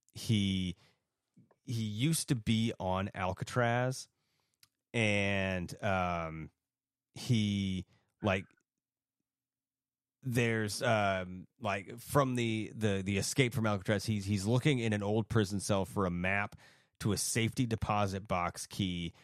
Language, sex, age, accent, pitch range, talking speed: English, male, 30-49, American, 95-115 Hz, 120 wpm